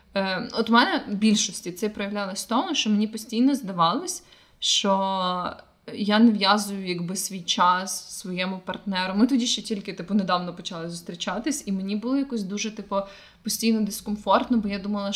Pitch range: 190-220 Hz